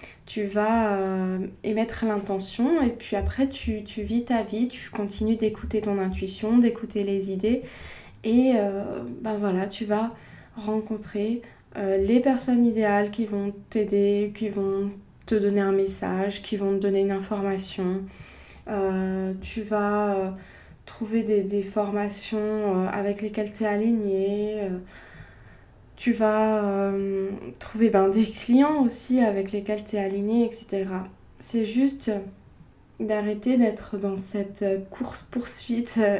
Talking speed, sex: 140 wpm, female